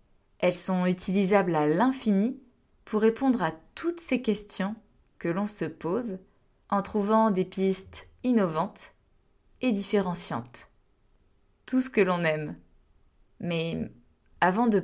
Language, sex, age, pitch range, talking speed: French, female, 20-39, 170-215 Hz, 120 wpm